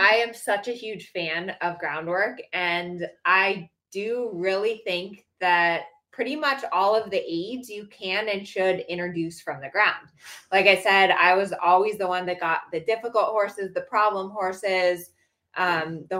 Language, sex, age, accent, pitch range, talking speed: English, female, 20-39, American, 175-220 Hz, 170 wpm